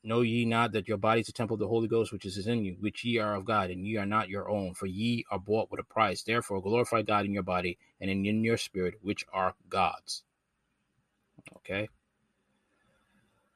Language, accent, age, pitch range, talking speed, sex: English, American, 30-49, 105-140 Hz, 215 wpm, male